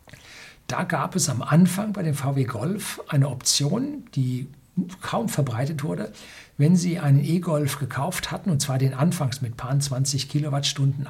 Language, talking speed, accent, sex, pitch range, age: German, 155 wpm, German, male, 130-160 Hz, 60-79